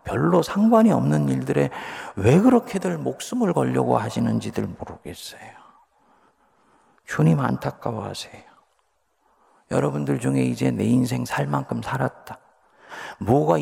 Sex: male